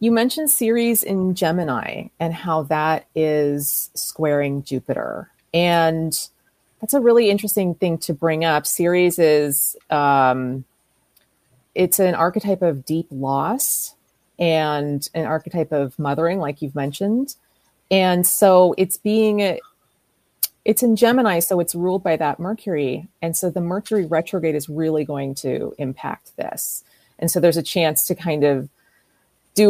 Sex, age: female, 30-49